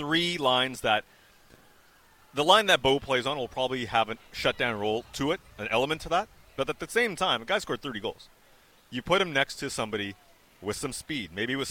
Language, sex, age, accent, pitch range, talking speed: English, male, 30-49, American, 105-145 Hz, 215 wpm